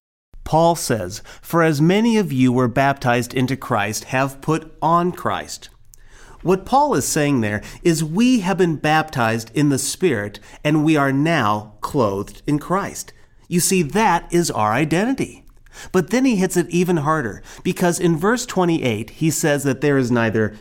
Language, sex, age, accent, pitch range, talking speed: English, male, 30-49, American, 115-165 Hz, 170 wpm